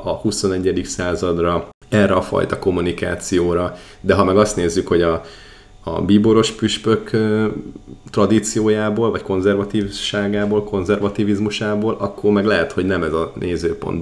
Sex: male